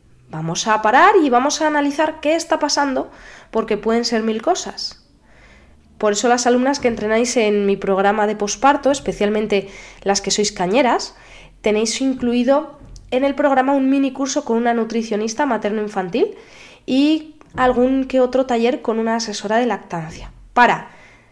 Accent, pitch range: Spanish, 205-270 Hz